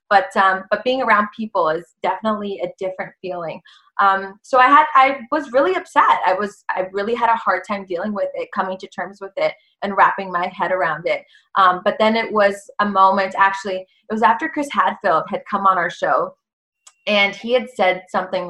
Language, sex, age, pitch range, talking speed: English, female, 20-39, 190-245 Hz, 210 wpm